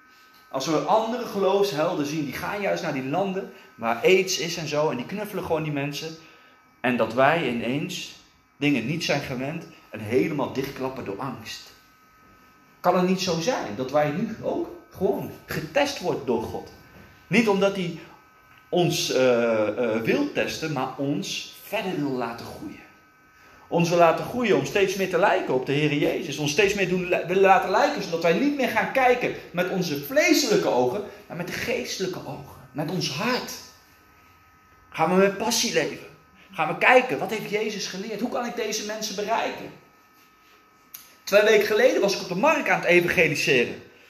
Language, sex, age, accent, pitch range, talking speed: Dutch, male, 30-49, Dutch, 145-215 Hz, 175 wpm